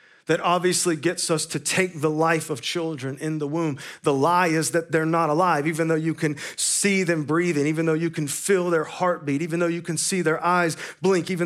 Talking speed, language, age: 225 wpm, English, 40-59